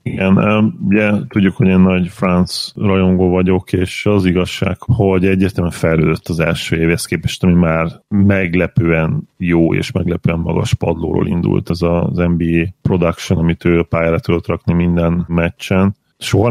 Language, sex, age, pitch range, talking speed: Hungarian, male, 30-49, 85-95 Hz, 150 wpm